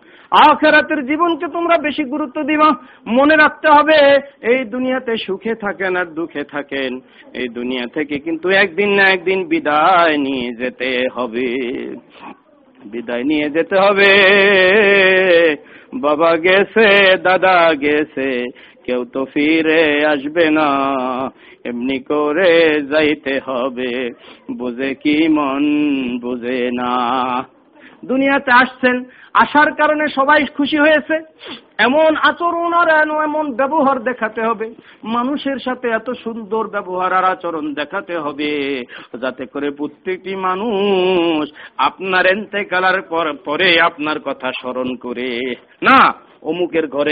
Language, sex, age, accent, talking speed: Bengali, male, 50-69, native, 60 wpm